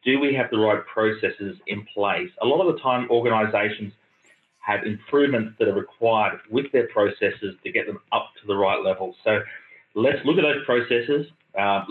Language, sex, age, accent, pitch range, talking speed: English, male, 30-49, Australian, 105-135 Hz, 185 wpm